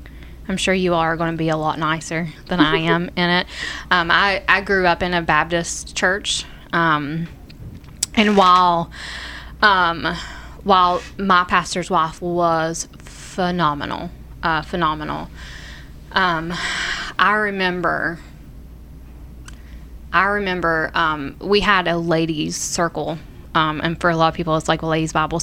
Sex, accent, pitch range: female, American, 155-180 Hz